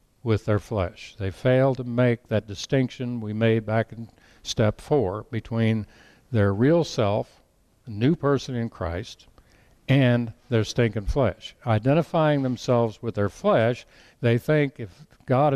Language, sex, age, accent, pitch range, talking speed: English, male, 60-79, American, 105-130 Hz, 145 wpm